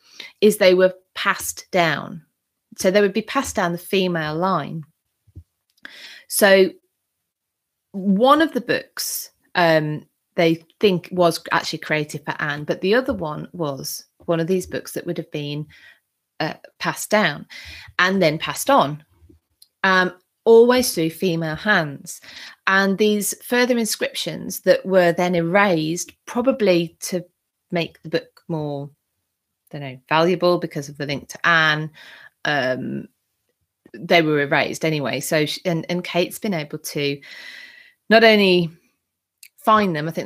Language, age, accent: English, 30-49, British